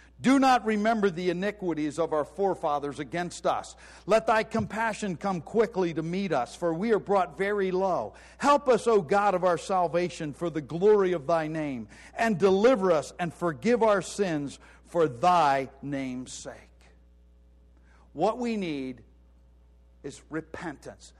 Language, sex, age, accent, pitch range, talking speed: English, male, 50-69, American, 160-210 Hz, 150 wpm